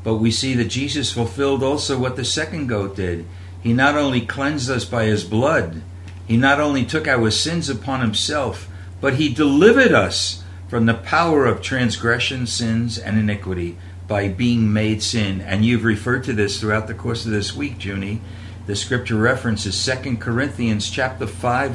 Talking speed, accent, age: 175 wpm, American, 60-79